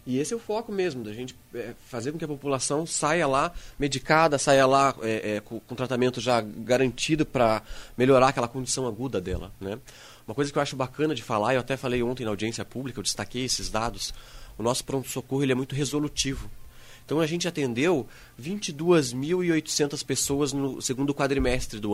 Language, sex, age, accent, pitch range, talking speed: English, male, 20-39, Brazilian, 120-150 Hz, 185 wpm